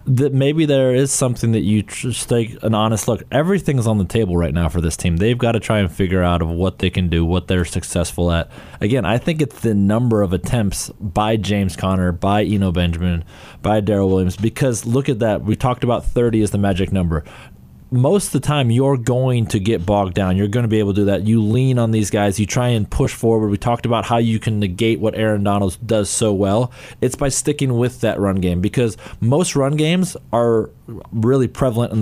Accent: American